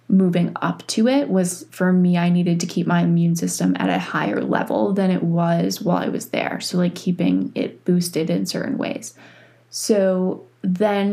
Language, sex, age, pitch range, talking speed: English, female, 20-39, 170-185 Hz, 190 wpm